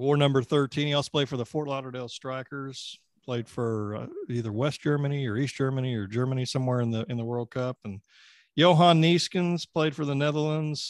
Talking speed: 200 wpm